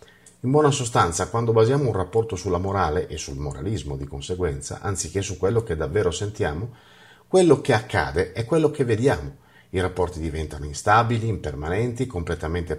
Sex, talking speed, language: male, 155 wpm, Italian